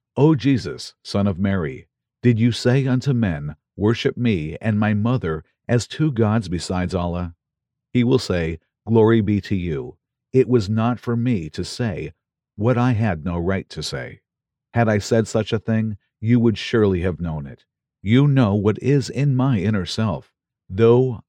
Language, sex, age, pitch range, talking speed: English, male, 50-69, 100-125 Hz, 175 wpm